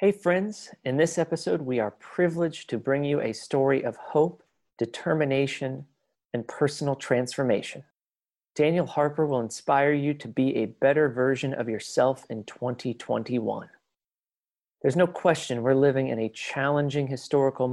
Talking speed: 140 wpm